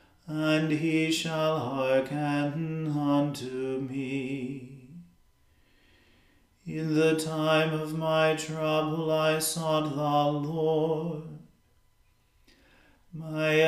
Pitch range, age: 145-160 Hz, 40-59